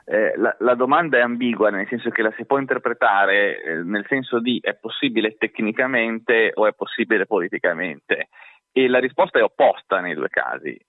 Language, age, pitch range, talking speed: Italian, 30-49, 105-160 Hz, 175 wpm